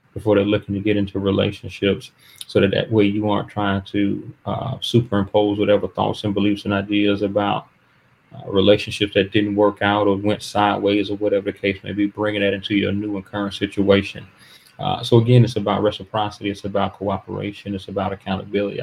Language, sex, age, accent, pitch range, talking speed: English, male, 30-49, American, 100-110 Hz, 185 wpm